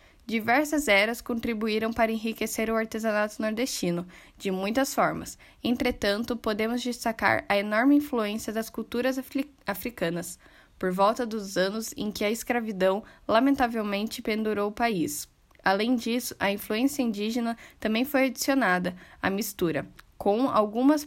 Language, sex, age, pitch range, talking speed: Portuguese, female, 10-29, 205-250 Hz, 125 wpm